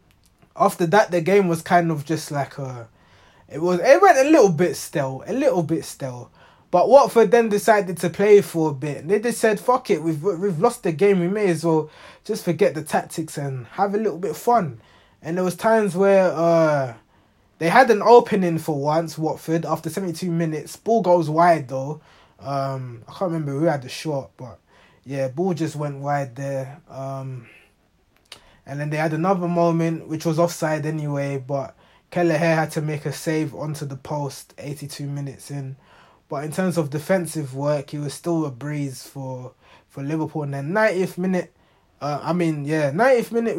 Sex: male